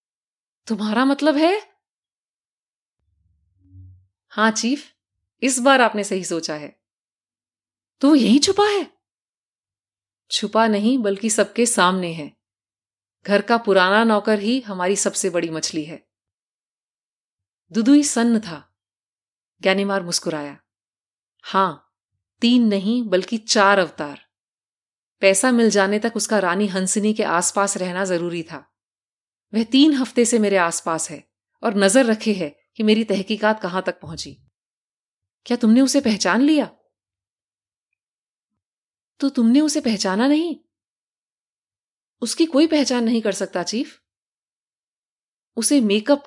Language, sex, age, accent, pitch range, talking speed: Hindi, female, 30-49, native, 160-245 Hz, 115 wpm